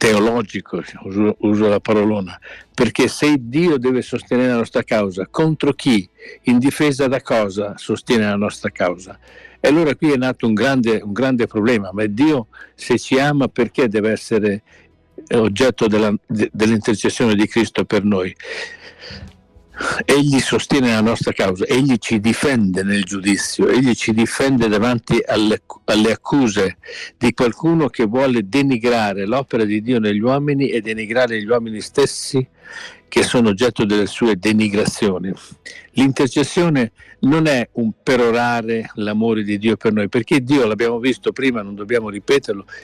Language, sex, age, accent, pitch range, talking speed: Italian, male, 60-79, native, 105-135 Hz, 145 wpm